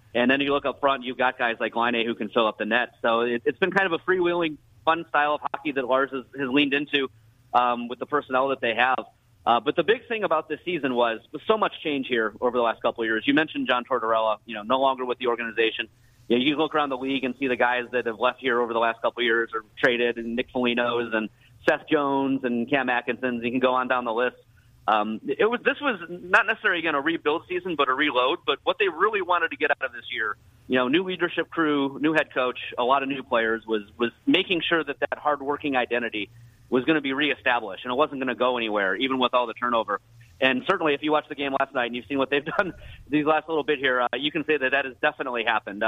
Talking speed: 270 wpm